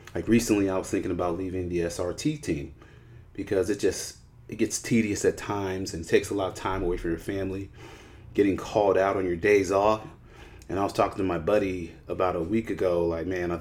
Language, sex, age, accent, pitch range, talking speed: English, male, 30-49, American, 90-110 Hz, 215 wpm